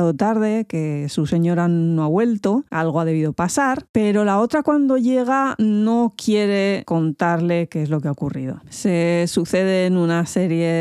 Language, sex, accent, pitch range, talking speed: Spanish, female, Spanish, 155-195 Hz, 160 wpm